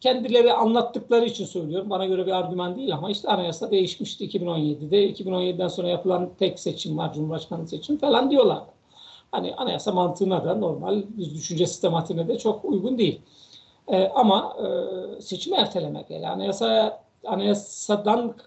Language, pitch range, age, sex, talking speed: Turkish, 180-215 Hz, 60-79, male, 140 wpm